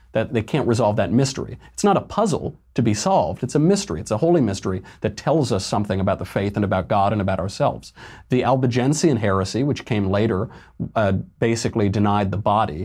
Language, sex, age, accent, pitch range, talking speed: English, male, 40-59, American, 100-120 Hz, 205 wpm